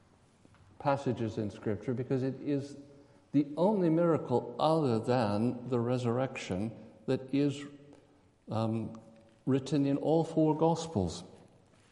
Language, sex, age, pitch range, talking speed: English, male, 60-79, 110-155 Hz, 105 wpm